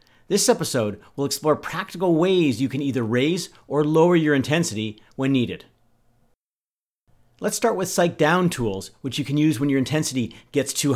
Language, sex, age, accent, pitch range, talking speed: English, male, 40-59, American, 120-155 Hz, 170 wpm